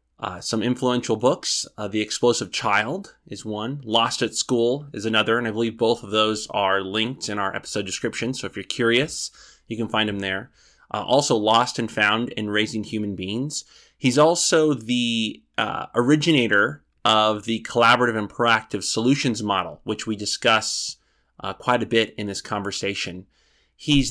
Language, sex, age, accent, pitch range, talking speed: English, male, 20-39, American, 105-120 Hz, 170 wpm